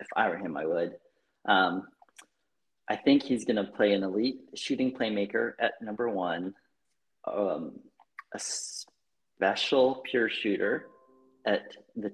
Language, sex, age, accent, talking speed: English, male, 40-59, American, 135 wpm